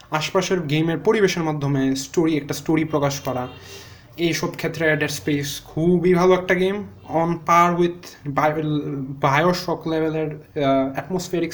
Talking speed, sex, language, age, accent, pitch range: 135 wpm, male, Bengali, 20-39, native, 130-185 Hz